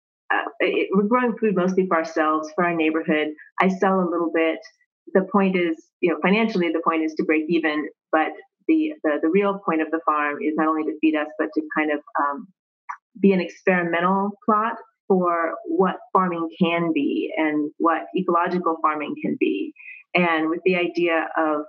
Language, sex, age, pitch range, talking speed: English, female, 30-49, 165-205 Hz, 190 wpm